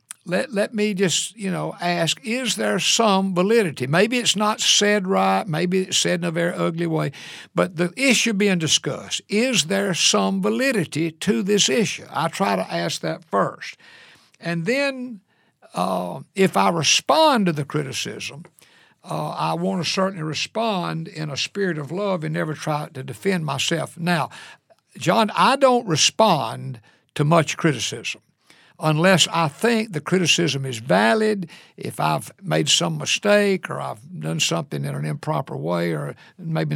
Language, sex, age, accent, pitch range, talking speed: English, male, 60-79, American, 150-205 Hz, 160 wpm